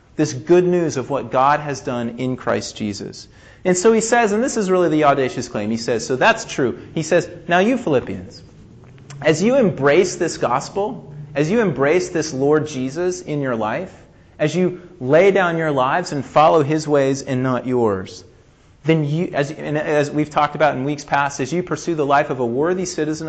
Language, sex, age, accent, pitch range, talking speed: English, male, 30-49, American, 125-175 Hz, 200 wpm